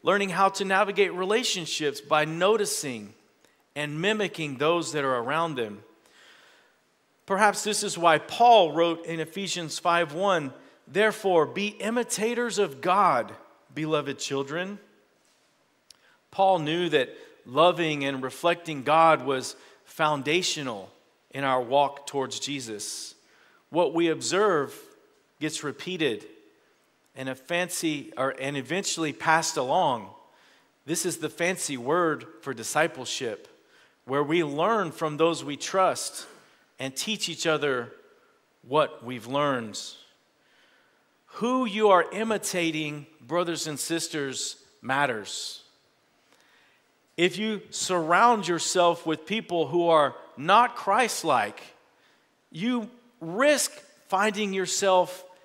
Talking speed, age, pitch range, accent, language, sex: 110 wpm, 40-59, 150-200 Hz, American, English, male